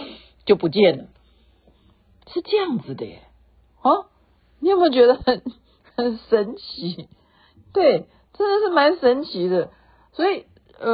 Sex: female